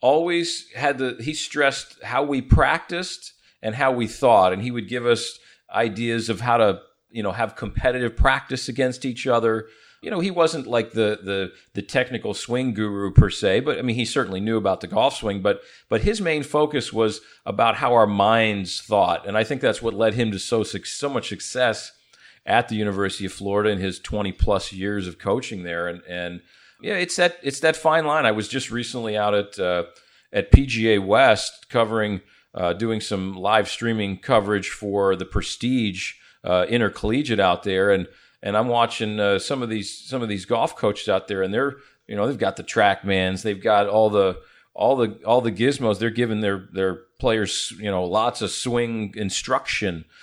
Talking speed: 195 wpm